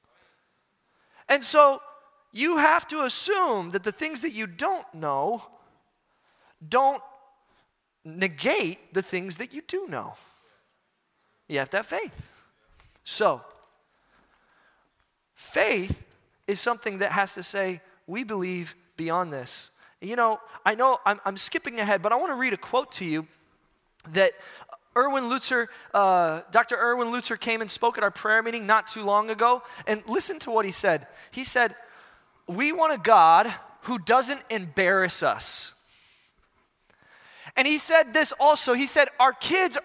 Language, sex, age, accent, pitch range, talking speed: English, male, 20-39, American, 205-290 Hz, 150 wpm